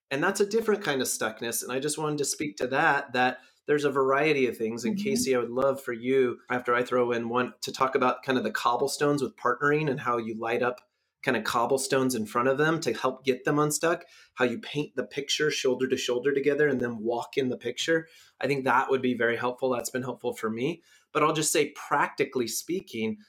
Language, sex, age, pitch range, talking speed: English, male, 30-49, 125-150 Hz, 235 wpm